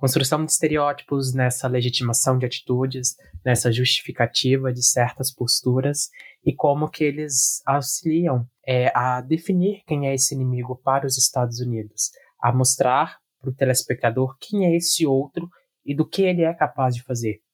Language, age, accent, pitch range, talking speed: Portuguese, 20-39, Brazilian, 125-155 Hz, 155 wpm